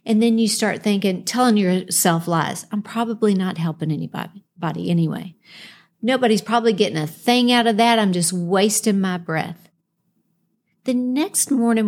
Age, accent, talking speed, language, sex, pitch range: 50-69, American, 150 wpm, English, female, 180-230 Hz